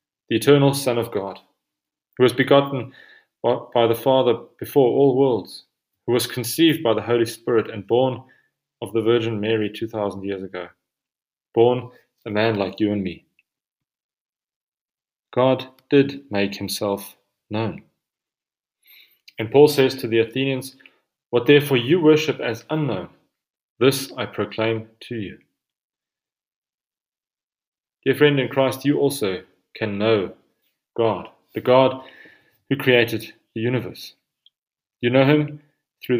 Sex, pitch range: male, 110-135 Hz